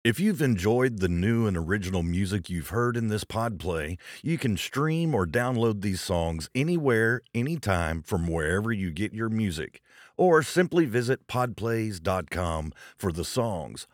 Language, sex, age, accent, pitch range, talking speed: English, male, 40-59, American, 85-115 Hz, 150 wpm